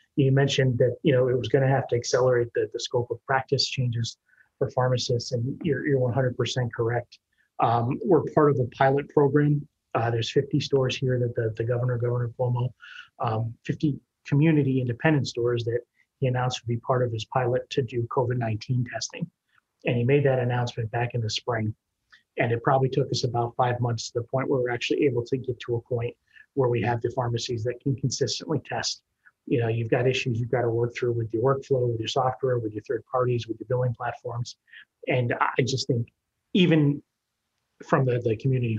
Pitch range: 120-130 Hz